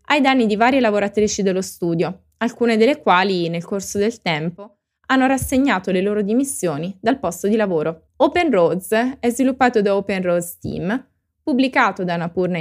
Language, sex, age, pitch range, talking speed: Italian, female, 20-39, 190-245 Hz, 160 wpm